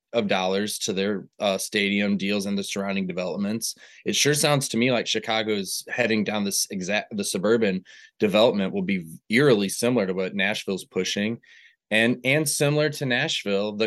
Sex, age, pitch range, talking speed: male, 20-39, 100-120 Hz, 165 wpm